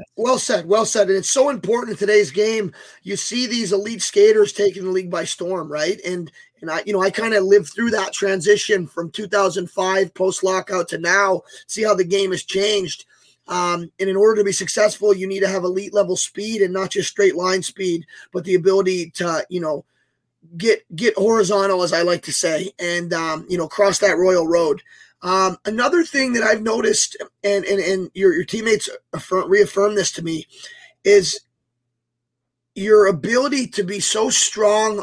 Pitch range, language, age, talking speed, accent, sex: 185-215 Hz, English, 20-39, 190 wpm, American, male